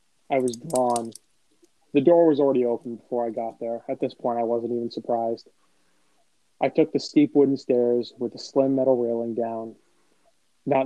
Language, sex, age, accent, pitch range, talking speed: English, male, 30-49, American, 115-140 Hz, 175 wpm